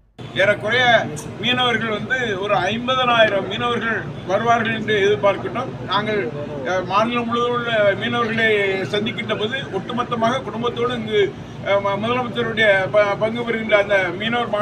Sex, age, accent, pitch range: male, 30-49, native, 155-210 Hz